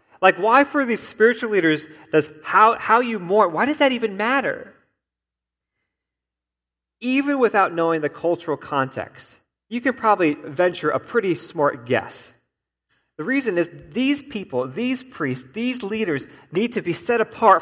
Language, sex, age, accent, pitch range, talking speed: English, male, 40-59, American, 140-225 Hz, 150 wpm